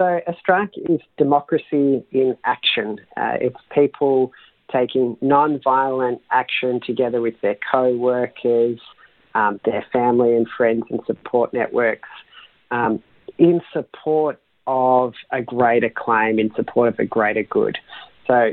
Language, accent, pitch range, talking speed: English, Australian, 125-150 Hz, 125 wpm